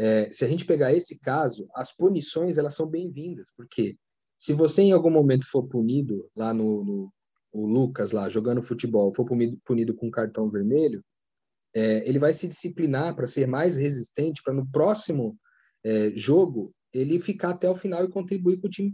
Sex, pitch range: male, 120-180 Hz